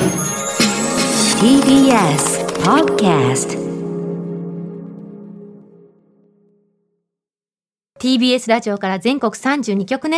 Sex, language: female, Japanese